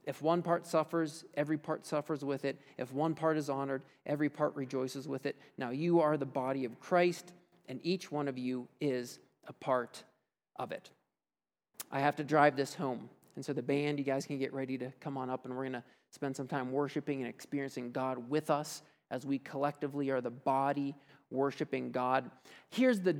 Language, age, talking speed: English, 40-59, 200 wpm